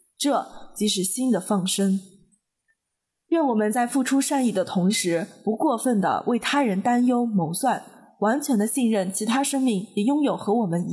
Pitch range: 195-255 Hz